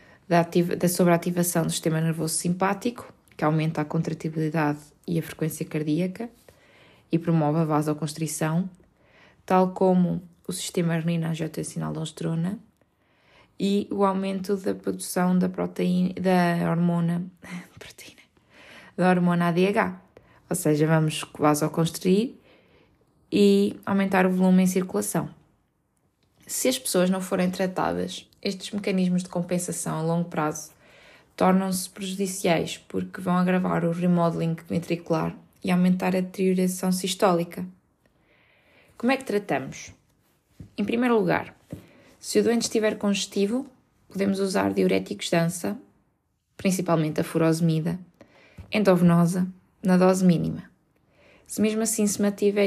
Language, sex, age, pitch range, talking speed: Portuguese, female, 20-39, 160-190 Hz, 120 wpm